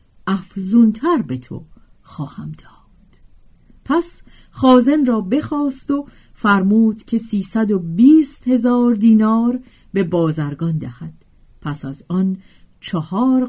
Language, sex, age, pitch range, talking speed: Persian, female, 40-59, 150-240 Hz, 105 wpm